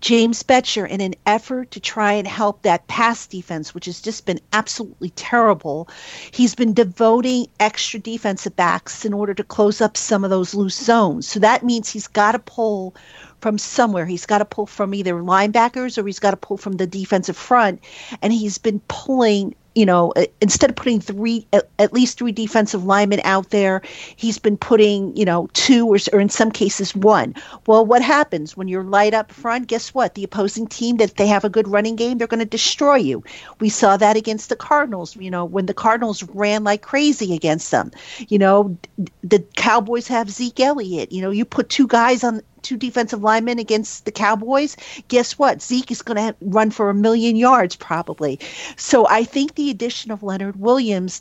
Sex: female